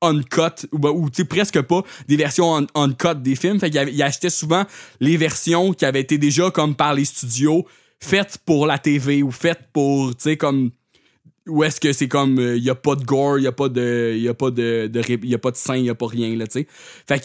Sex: male